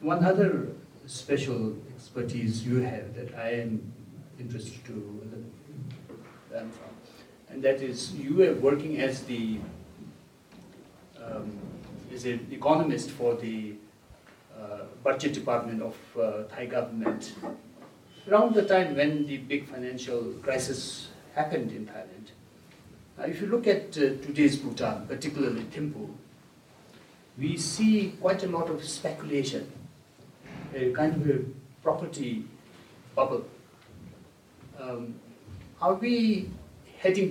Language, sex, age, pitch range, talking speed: English, male, 60-79, 115-150 Hz, 115 wpm